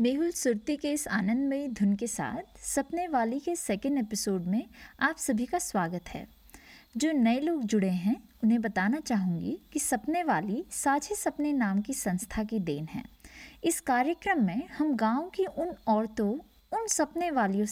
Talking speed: 165 wpm